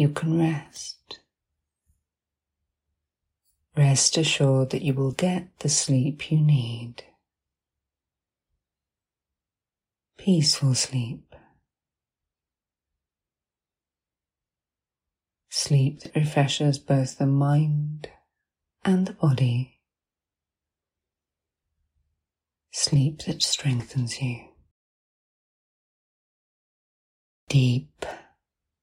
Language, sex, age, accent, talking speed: English, female, 40-59, British, 60 wpm